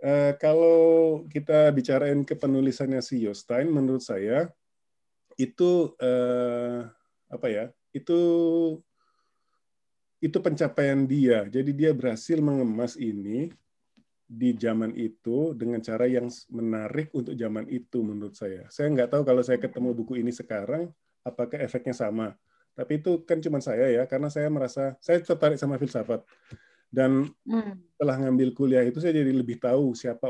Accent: native